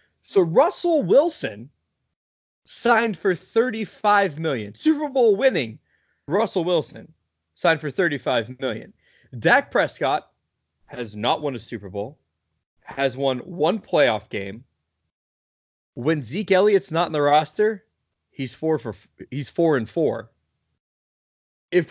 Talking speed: 120 wpm